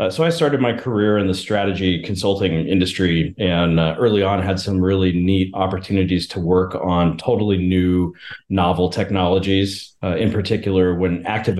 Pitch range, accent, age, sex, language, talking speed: 90-105 Hz, American, 30-49, male, English, 165 wpm